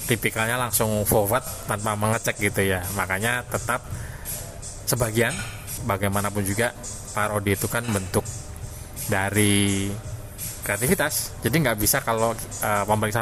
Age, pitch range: 20-39, 100-120 Hz